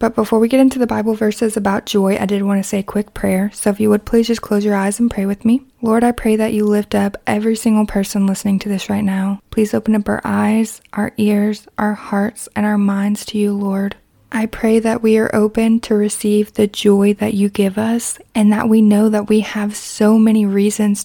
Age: 20-39